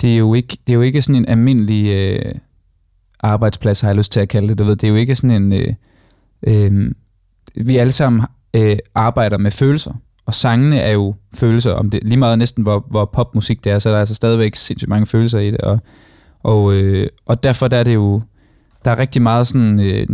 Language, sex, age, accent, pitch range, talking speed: Danish, male, 20-39, native, 105-125 Hz, 230 wpm